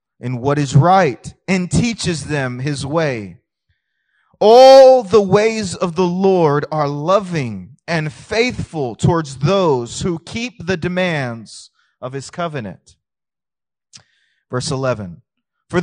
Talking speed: 120 wpm